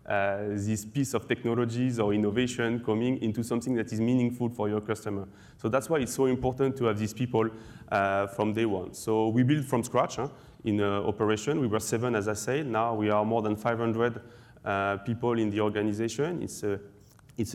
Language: English